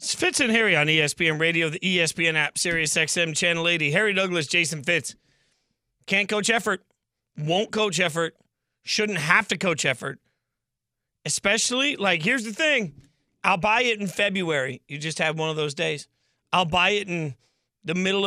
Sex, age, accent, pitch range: male, 30-49, American, 150-195 Hz